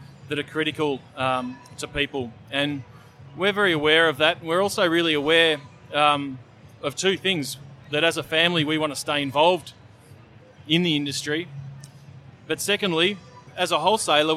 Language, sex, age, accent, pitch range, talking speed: English, male, 30-49, Australian, 135-160 Hz, 155 wpm